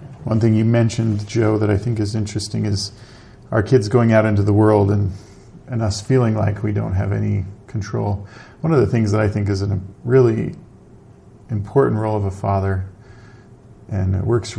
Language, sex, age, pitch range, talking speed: English, male, 40-59, 105-120 Hz, 195 wpm